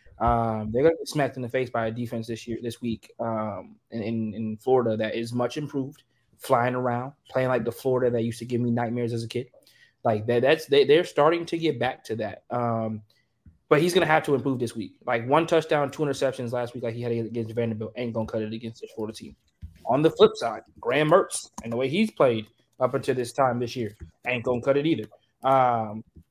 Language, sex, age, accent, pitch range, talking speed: English, male, 20-39, American, 115-135 Hz, 230 wpm